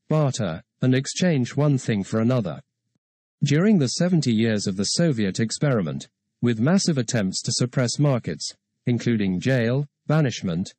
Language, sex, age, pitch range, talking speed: English, male, 40-59, 110-150 Hz, 135 wpm